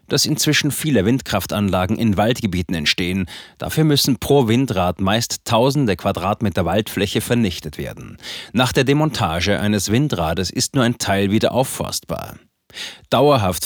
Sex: male